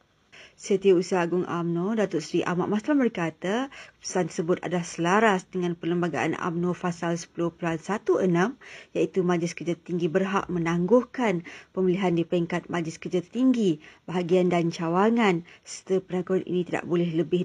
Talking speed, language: 130 wpm, Malay